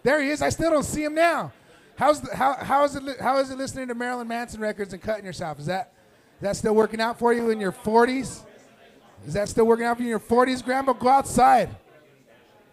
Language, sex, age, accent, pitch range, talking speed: English, male, 30-49, American, 215-265 Hz, 240 wpm